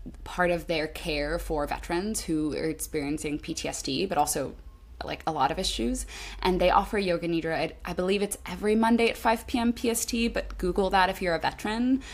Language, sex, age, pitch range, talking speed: English, female, 20-39, 155-200 Hz, 195 wpm